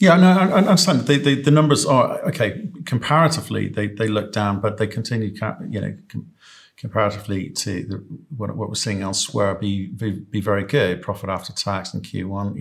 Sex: male